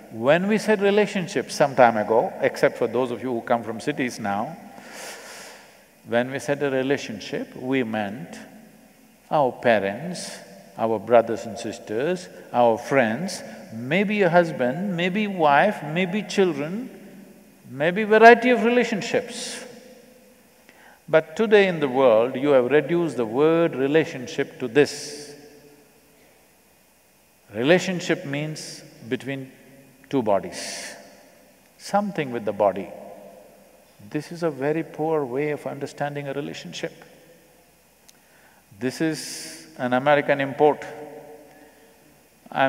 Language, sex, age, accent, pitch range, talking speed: Tamil, male, 50-69, native, 130-190 Hz, 115 wpm